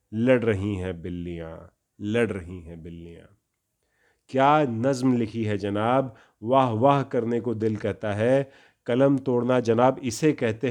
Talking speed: 140 wpm